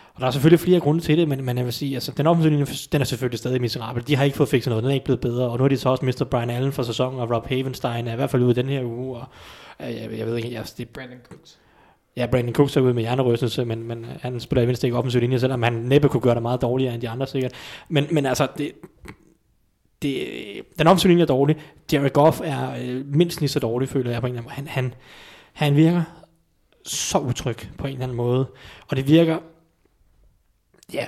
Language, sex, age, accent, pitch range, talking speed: Danish, male, 20-39, native, 125-150 Hz, 240 wpm